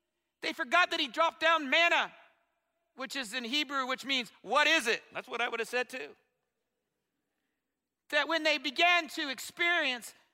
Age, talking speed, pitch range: 50-69, 170 wpm, 270-330 Hz